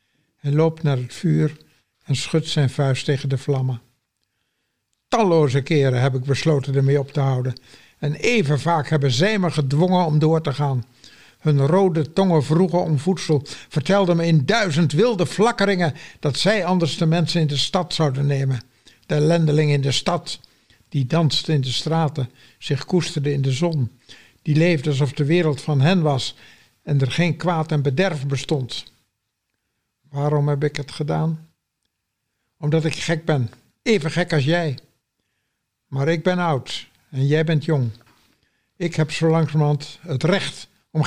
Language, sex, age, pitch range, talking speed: Dutch, male, 60-79, 135-175 Hz, 165 wpm